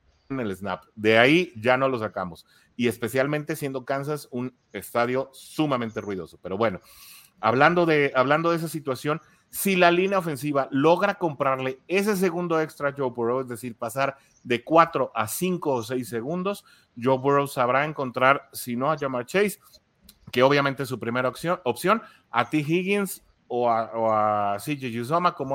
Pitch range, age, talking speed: 120-160 Hz, 30-49, 170 wpm